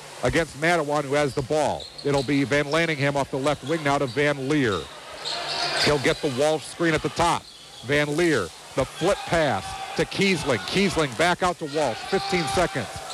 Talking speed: 185 wpm